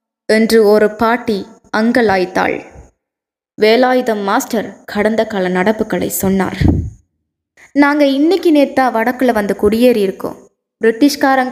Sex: female